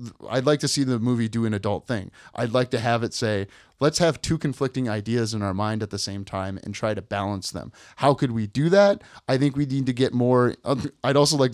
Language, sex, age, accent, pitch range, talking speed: English, male, 30-49, American, 110-140 Hz, 250 wpm